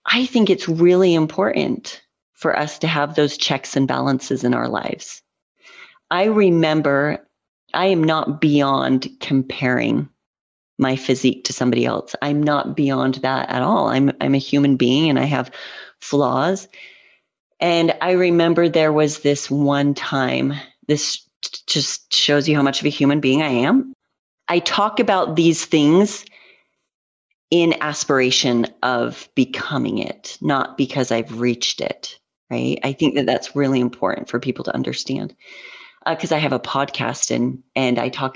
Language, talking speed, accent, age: English, 155 wpm, American, 30-49